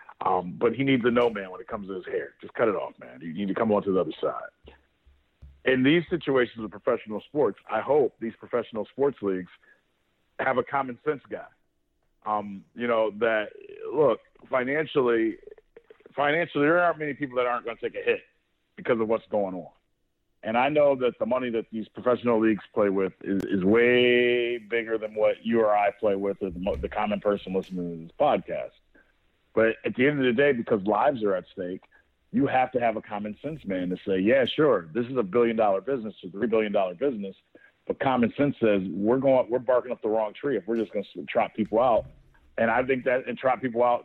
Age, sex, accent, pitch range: 50-69, male, American, 105-130 Hz